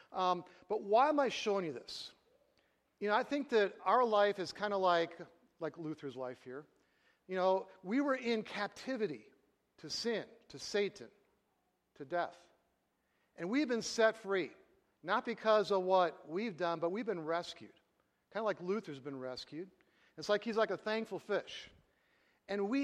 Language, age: English, 50-69